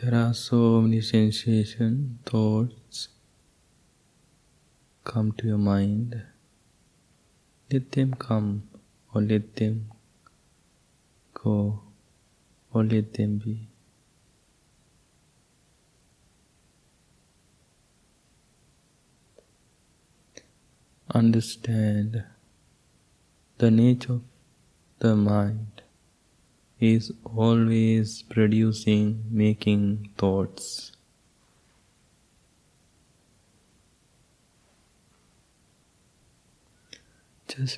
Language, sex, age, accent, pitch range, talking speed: English, male, 20-39, Indian, 105-120 Hz, 50 wpm